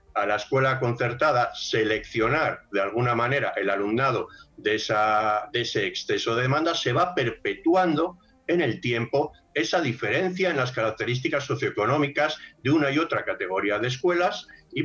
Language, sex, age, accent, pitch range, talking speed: Spanish, male, 50-69, Spanish, 115-150 Hz, 145 wpm